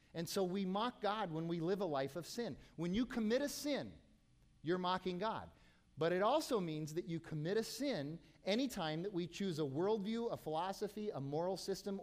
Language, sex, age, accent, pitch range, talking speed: English, male, 40-59, American, 145-210 Hz, 200 wpm